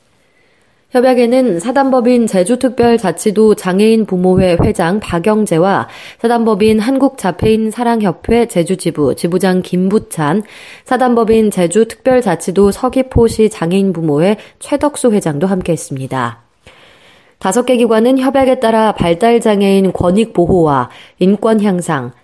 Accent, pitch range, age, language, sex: native, 170-225 Hz, 20-39, Korean, female